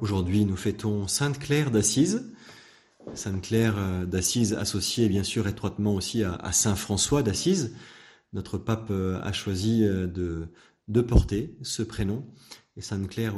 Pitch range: 100-120 Hz